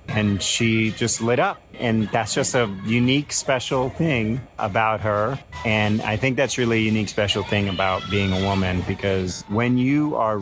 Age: 30-49